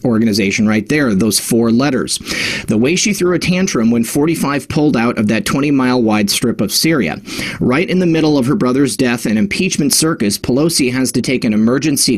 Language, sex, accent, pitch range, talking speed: English, male, American, 115-170 Hz, 200 wpm